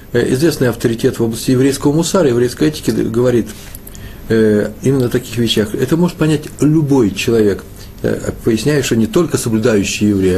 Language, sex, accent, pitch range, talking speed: Russian, male, native, 105-130 Hz, 140 wpm